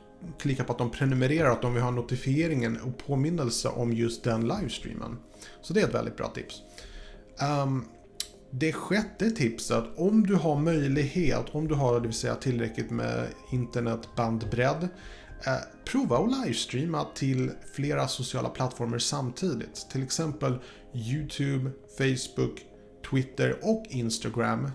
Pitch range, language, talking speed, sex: 115-140 Hz, Swedish, 135 wpm, male